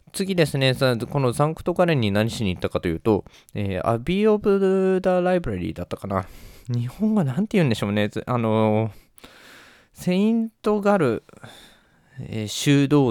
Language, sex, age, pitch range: Japanese, male, 20-39, 100-145 Hz